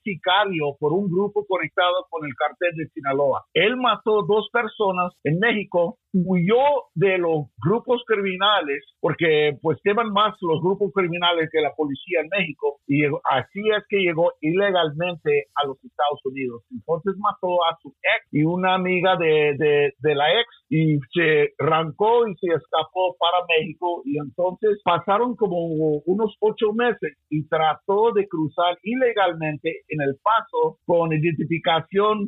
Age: 50-69